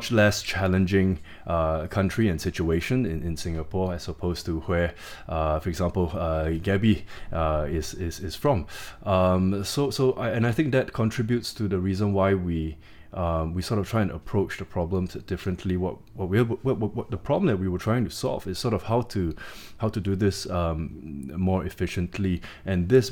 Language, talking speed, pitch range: English, 185 wpm, 90-105 Hz